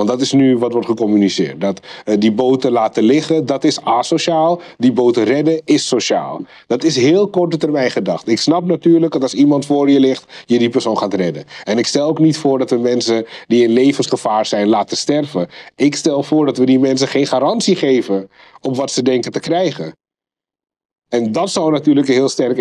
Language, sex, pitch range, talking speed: Dutch, male, 135-165 Hz, 205 wpm